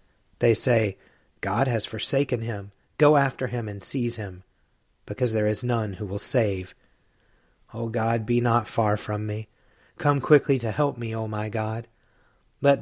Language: English